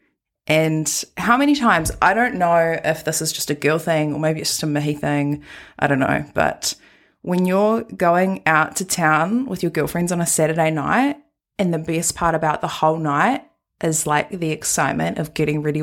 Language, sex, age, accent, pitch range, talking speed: English, female, 20-39, Australian, 155-205 Hz, 200 wpm